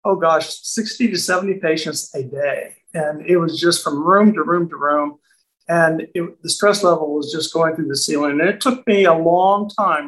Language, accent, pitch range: English, American, 155-195 Hz